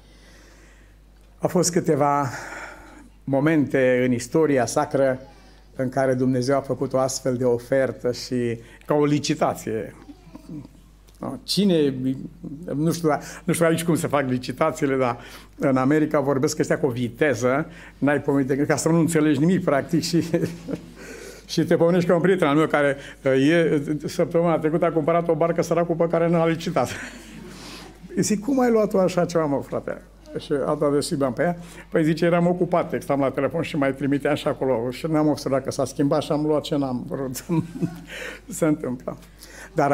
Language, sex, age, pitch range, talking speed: Romanian, male, 60-79, 130-165 Hz, 170 wpm